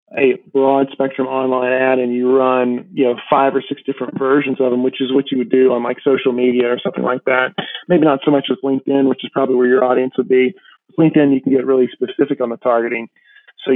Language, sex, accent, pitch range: English, male, American, 130-140 Hz